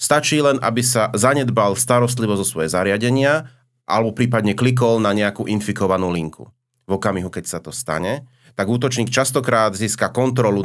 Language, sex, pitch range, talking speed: Slovak, male, 100-125 Hz, 150 wpm